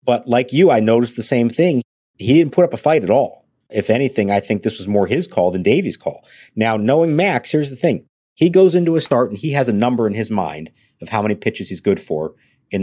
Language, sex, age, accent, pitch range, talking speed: English, male, 50-69, American, 105-130 Hz, 255 wpm